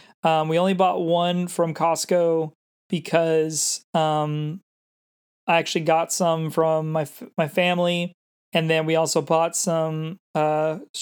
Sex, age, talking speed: male, 20-39, 135 wpm